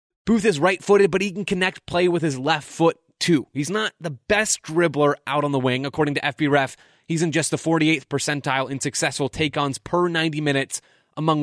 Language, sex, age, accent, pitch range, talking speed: English, male, 20-39, American, 140-175 Hz, 205 wpm